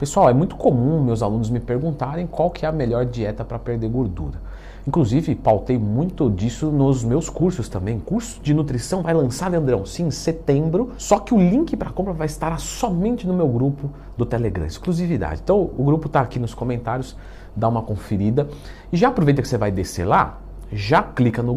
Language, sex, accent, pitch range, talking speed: Portuguese, male, Brazilian, 100-160 Hz, 195 wpm